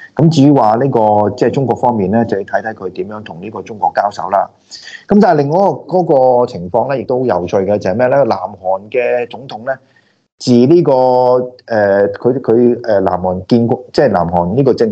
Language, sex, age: Chinese, male, 30-49